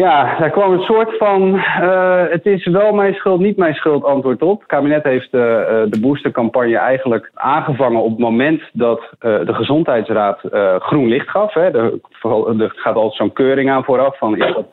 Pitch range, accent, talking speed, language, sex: 115-155 Hz, Dutch, 195 wpm, Dutch, male